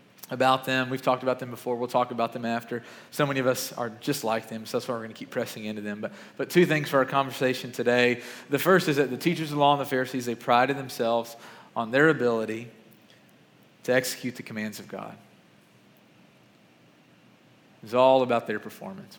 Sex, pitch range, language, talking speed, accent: male, 115-150 Hz, English, 215 wpm, American